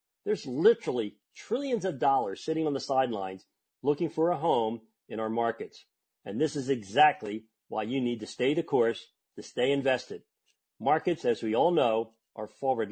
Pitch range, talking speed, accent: 120-160 Hz, 170 wpm, American